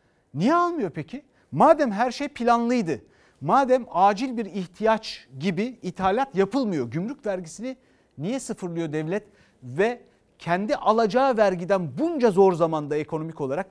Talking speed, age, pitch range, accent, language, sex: 125 wpm, 60-79, 145-210 Hz, native, Turkish, male